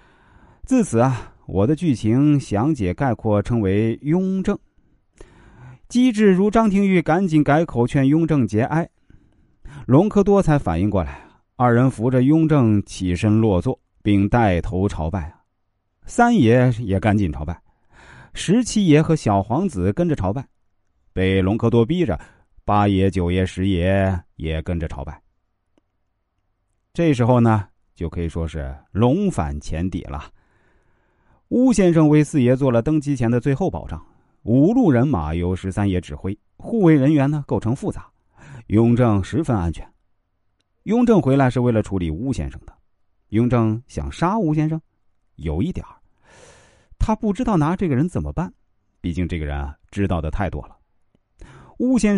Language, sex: Chinese, male